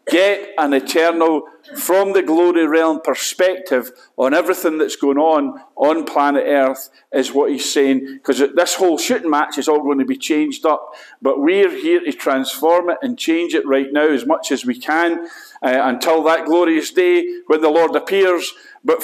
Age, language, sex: 50-69, English, male